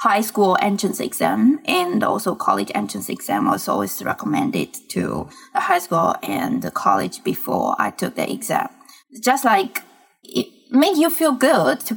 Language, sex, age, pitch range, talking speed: English, female, 20-39, 195-280 Hz, 160 wpm